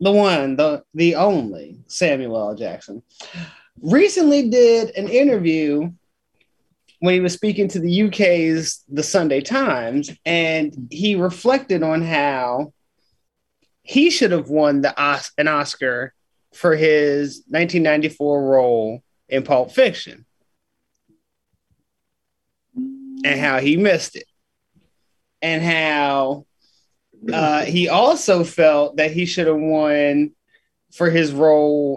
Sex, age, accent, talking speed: male, 30-49, American, 115 wpm